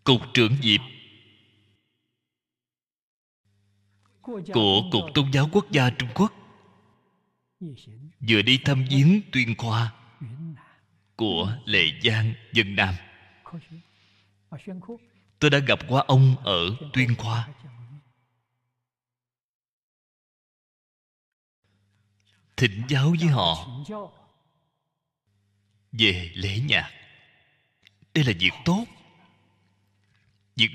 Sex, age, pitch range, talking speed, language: male, 20-39, 100-145 Hz, 80 wpm, Vietnamese